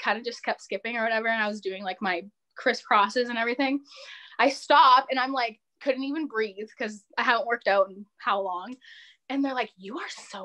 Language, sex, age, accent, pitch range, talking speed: English, female, 10-29, American, 205-270 Hz, 220 wpm